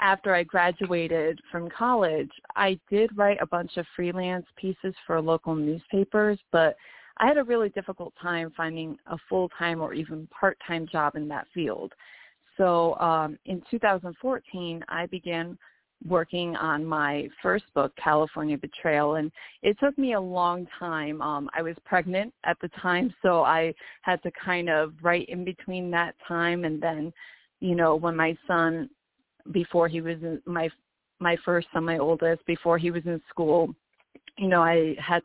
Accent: American